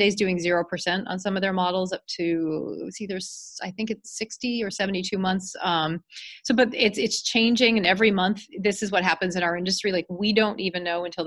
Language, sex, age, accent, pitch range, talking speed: English, female, 30-49, American, 170-210 Hz, 220 wpm